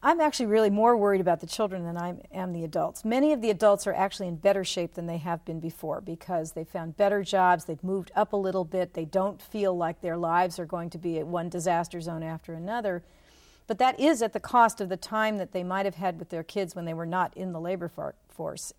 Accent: American